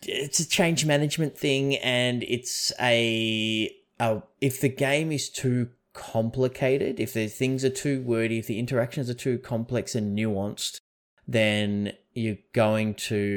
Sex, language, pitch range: male, English, 105-130 Hz